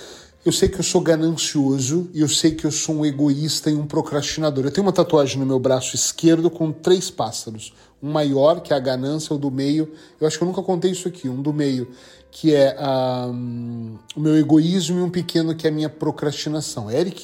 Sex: male